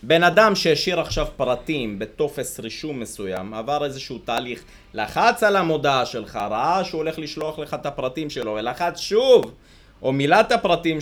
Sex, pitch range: male, 120-160 Hz